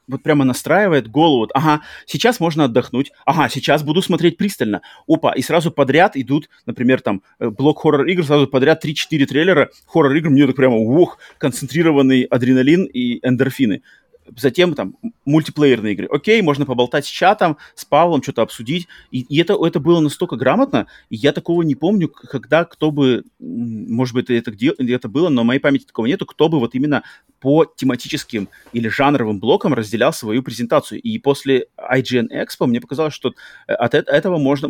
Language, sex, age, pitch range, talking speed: Russian, male, 30-49, 125-160 Hz, 170 wpm